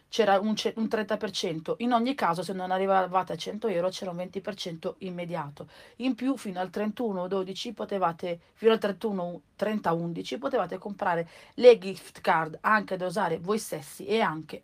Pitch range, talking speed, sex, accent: 170-215 Hz, 170 wpm, female, native